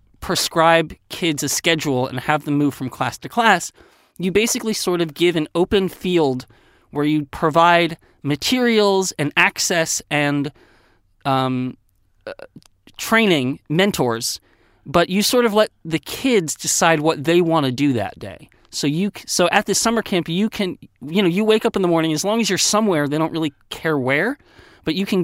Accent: American